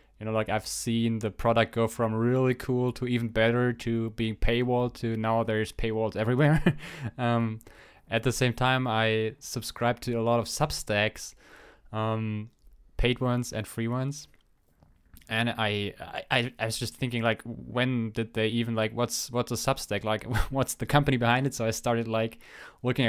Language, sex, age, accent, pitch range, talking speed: English, male, 20-39, German, 110-125 Hz, 180 wpm